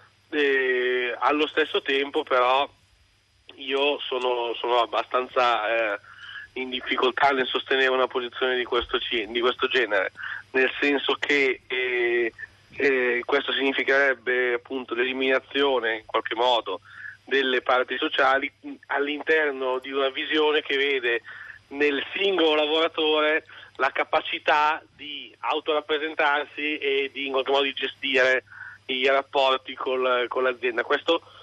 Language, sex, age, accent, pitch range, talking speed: Italian, male, 30-49, native, 125-150 Hz, 115 wpm